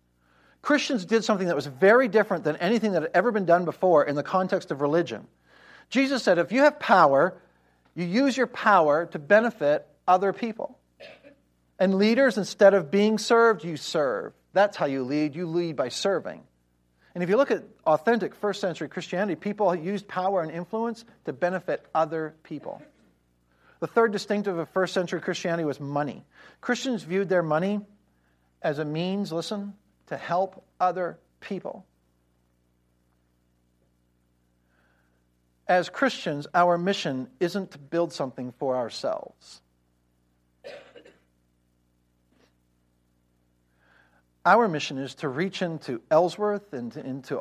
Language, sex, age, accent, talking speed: English, male, 50-69, American, 135 wpm